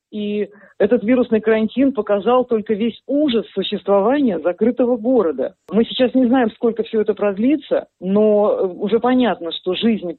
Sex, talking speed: female, 140 wpm